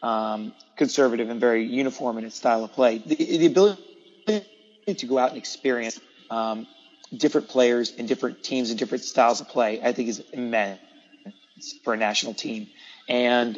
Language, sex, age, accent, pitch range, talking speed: English, male, 30-49, American, 120-135 Hz, 170 wpm